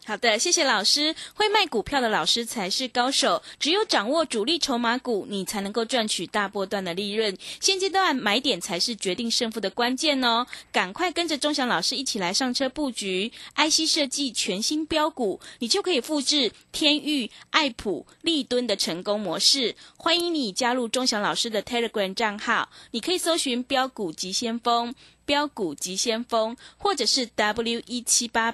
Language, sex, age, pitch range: Chinese, female, 20-39, 215-295 Hz